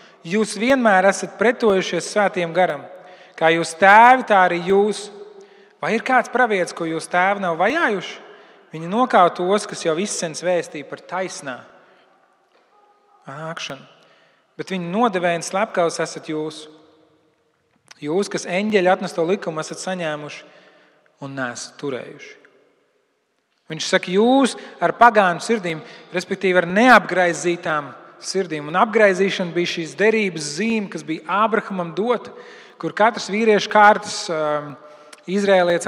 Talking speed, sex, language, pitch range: 115 wpm, male, English, 160-205 Hz